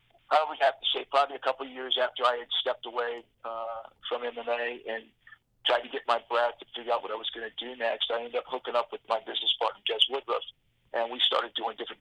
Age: 50-69